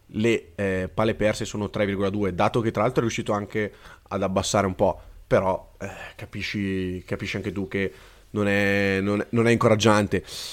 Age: 30-49